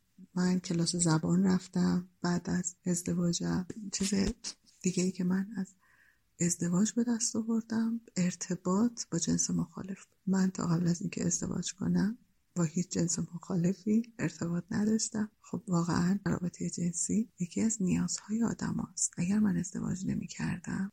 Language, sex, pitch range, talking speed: Persian, female, 175-210 Hz, 140 wpm